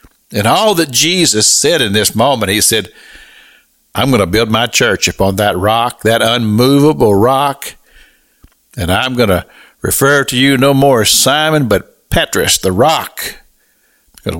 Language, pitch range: English, 105-145 Hz